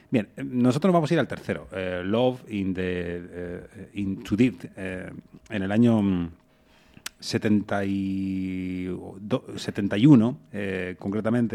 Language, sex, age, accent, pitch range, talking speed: Spanish, male, 30-49, Spanish, 95-115 Hz, 125 wpm